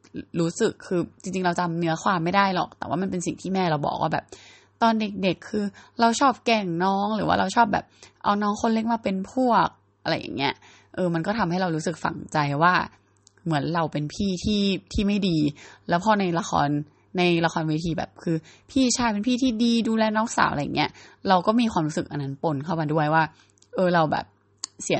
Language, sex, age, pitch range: Thai, female, 20-39, 150-200 Hz